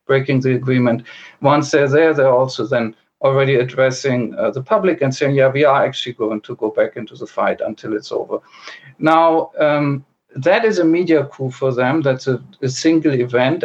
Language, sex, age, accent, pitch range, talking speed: English, male, 50-69, German, 135-160 Hz, 195 wpm